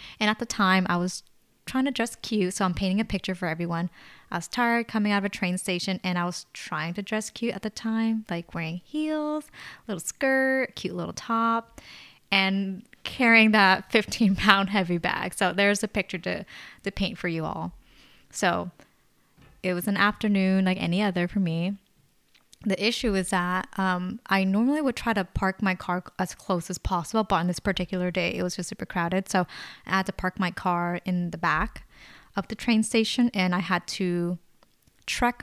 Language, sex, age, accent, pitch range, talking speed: English, female, 10-29, American, 180-220 Hz, 200 wpm